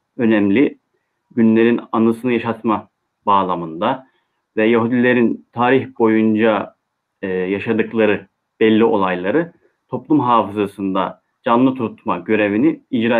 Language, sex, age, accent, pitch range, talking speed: Turkish, male, 30-49, native, 100-120 Hz, 85 wpm